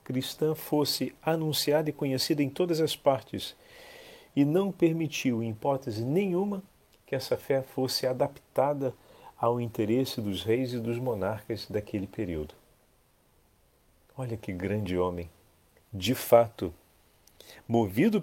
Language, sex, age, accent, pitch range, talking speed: Portuguese, male, 40-59, Brazilian, 105-140 Hz, 120 wpm